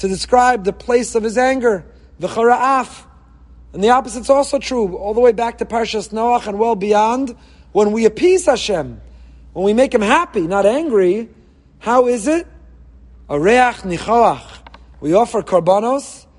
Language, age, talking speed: English, 30-49, 160 wpm